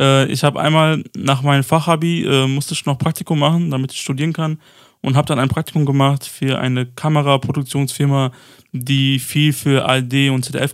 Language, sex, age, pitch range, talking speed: German, male, 20-39, 130-150 Hz, 170 wpm